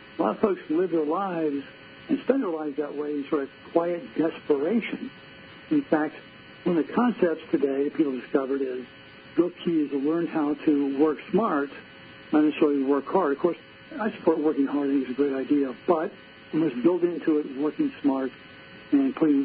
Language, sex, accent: English, male, American